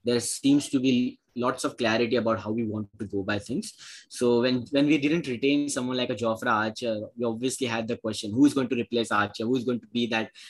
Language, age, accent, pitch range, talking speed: English, 10-29, Indian, 115-135 Hz, 245 wpm